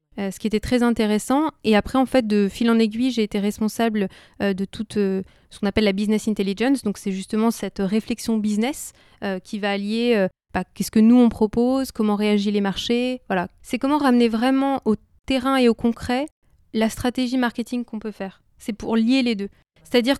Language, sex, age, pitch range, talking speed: French, female, 20-39, 215-250 Hz, 210 wpm